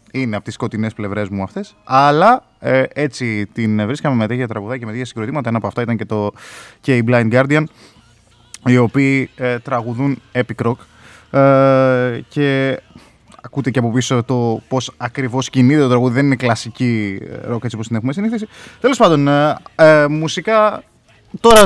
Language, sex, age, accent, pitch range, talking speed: Greek, male, 20-39, native, 115-135 Hz, 170 wpm